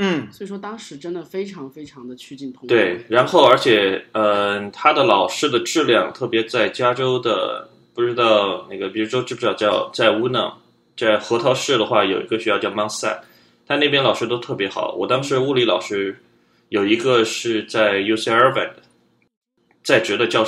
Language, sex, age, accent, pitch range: Chinese, male, 20-39, native, 110-170 Hz